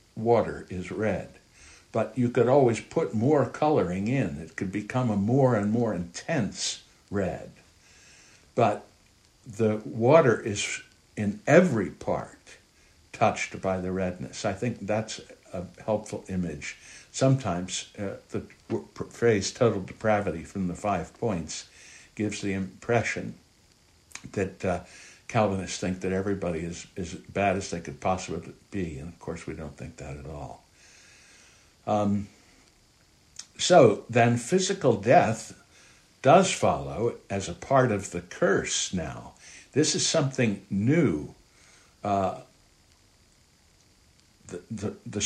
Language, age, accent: English, 60-79, American